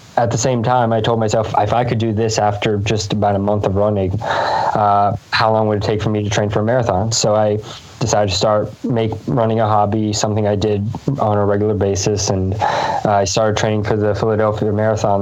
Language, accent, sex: English, American, male